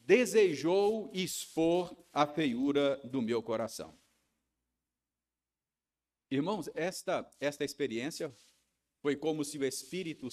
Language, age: Portuguese, 50-69